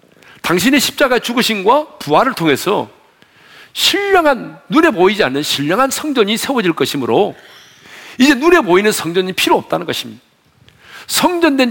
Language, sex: Korean, male